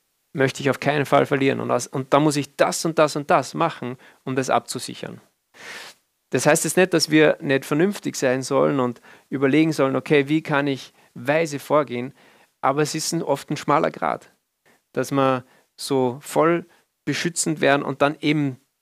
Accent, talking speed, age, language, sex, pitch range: German, 180 wpm, 40-59, German, male, 130-155 Hz